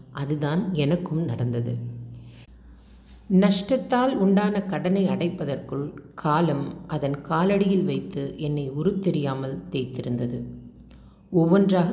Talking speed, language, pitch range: 75 wpm, Tamil, 120-175 Hz